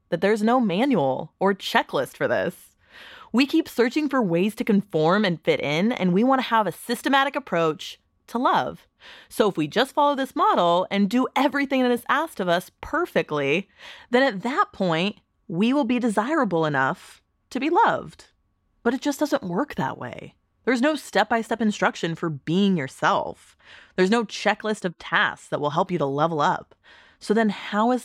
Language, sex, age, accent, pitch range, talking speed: English, female, 20-39, American, 170-235 Hz, 180 wpm